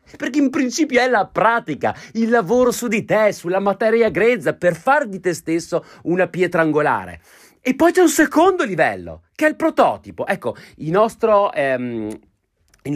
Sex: male